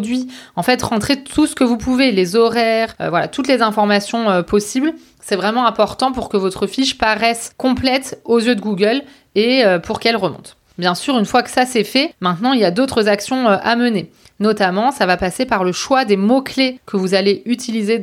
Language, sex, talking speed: French, female, 215 wpm